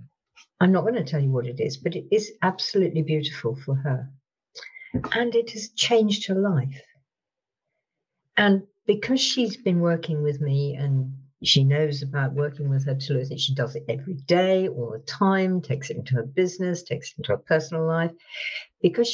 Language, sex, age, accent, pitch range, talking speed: English, female, 50-69, British, 135-185 Hz, 185 wpm